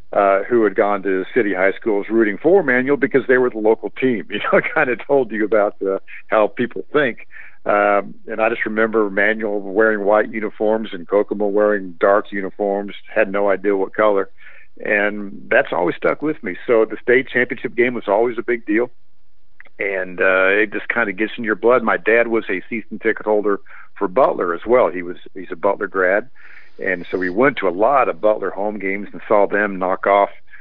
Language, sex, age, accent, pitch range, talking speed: English, male, 50-69, American, 100-120 Hz, 210 wpm